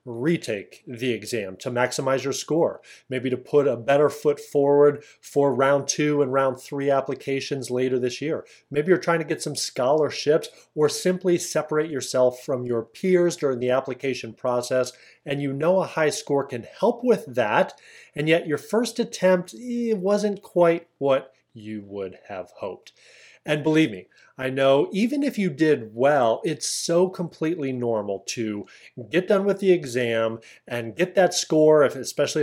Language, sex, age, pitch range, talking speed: English, male, 30-49, 125-175 Hz, 165 wpm